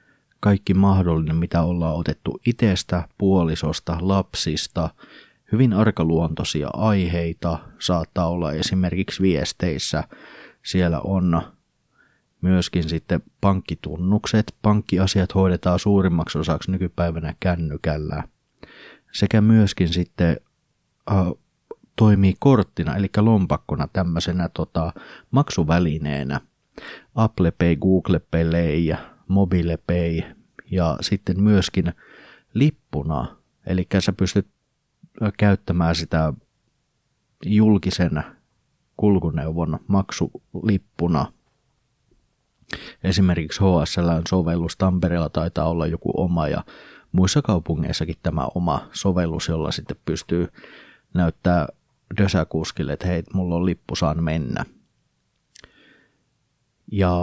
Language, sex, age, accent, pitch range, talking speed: Finnish, male, 30-49, native, 80-100 Hz, 85 wpm